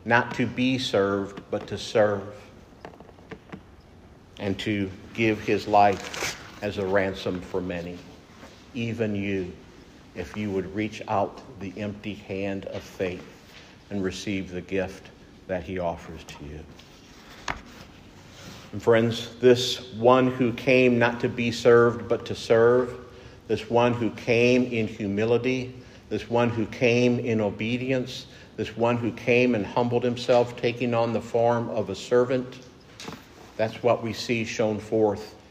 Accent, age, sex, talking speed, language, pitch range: American, 50-69, male, 140 wpm, English, 100-125 Hz